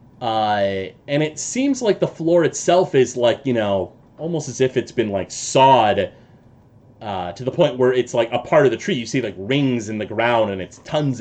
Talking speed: 220 wpm